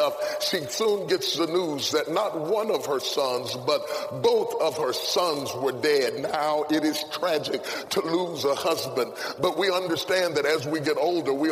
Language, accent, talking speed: English, American, 180 wpm